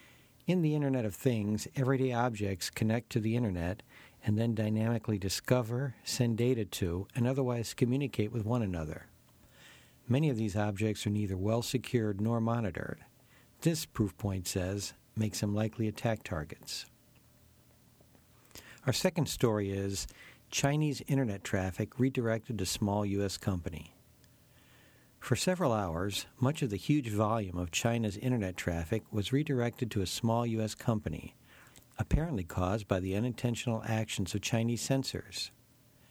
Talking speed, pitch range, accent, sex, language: 135 wpm, 100-125 Hz, American, male, English